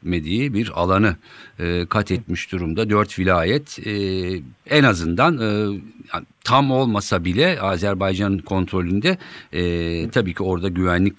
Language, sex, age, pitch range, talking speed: Turkish, male, 50-69, 95-130 Hz, 125 wpm